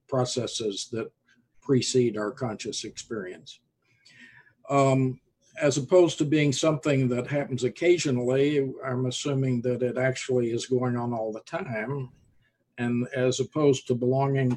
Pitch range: 120-135 Hz